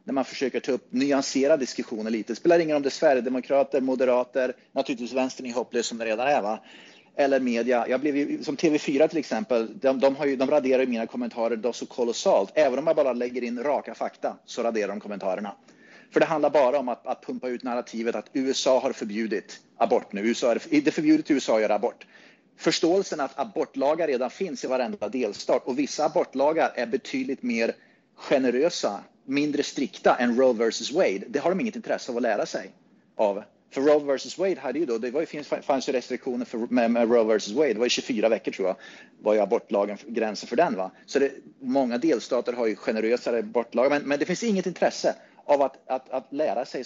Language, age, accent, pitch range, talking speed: Swedish, 30-49, native, 120-150 Hz, 210 wpm